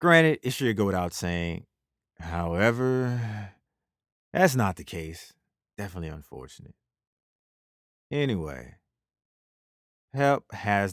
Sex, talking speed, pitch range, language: male, 90 wpm, 90-125 Hz, English